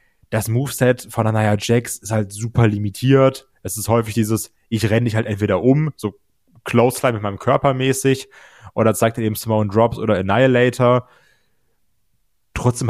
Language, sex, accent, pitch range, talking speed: German, male, German, 110-125 Hz, 160 wpm